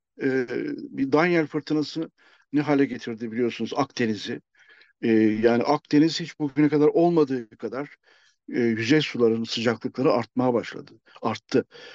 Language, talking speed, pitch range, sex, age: Turkish, 115 wpm, 130-165 Hz, male, 60-79